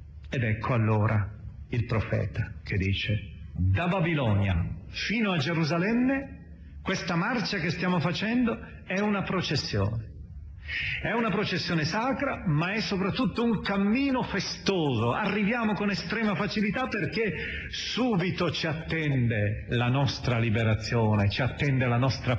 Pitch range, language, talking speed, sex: 110-180 Hz, Italian, 120 wpm, male